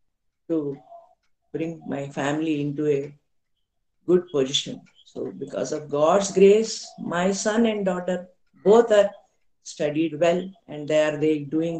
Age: 50-69